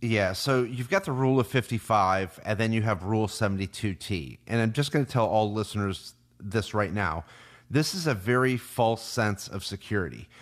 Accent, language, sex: American, English, male